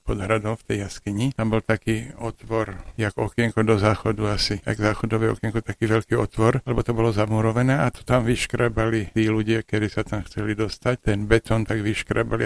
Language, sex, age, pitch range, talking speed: Slovak, male, 50-69, 105-115 Hz, 185 wpm